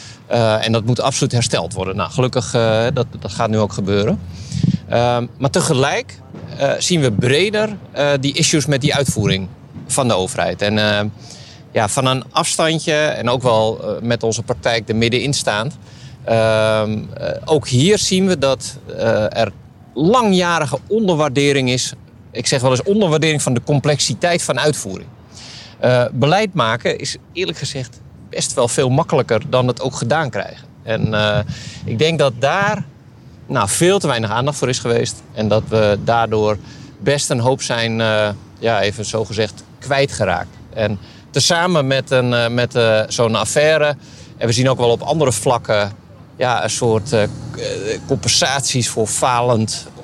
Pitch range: 115-150 Hz